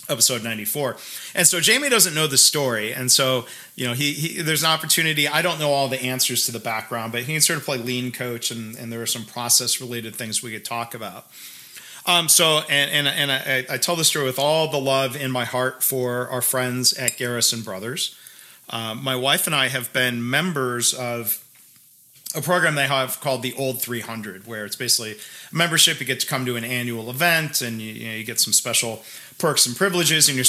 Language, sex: English, male